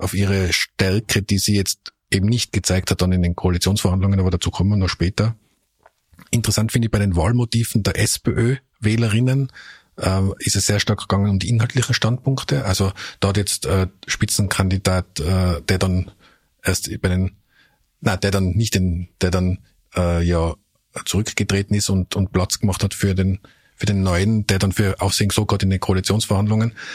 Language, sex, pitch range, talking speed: German, male, 95-110 Hz, 175 wpm